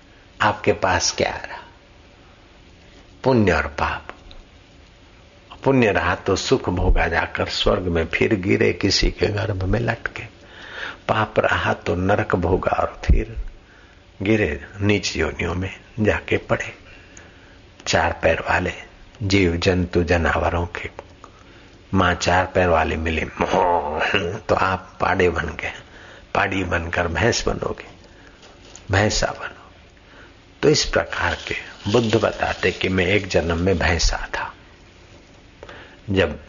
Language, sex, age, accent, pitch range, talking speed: Hindi, male, 60-79, native, 90-95 Hz, 125 wpm